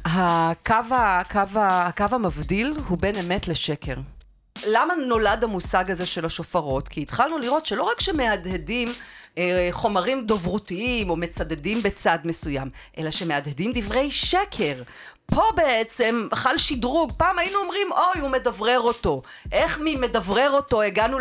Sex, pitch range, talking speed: female, 190-280 Hz, 130 wpm